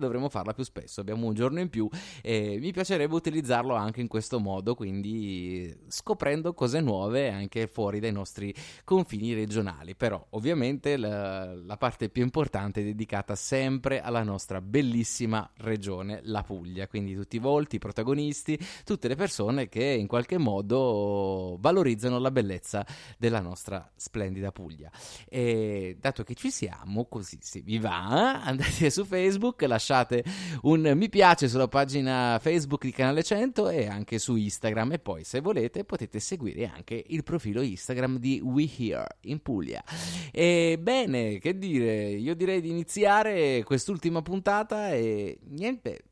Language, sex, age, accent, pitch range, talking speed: Italian, male, 20-39, native, 105-145 Hz, 155 wpm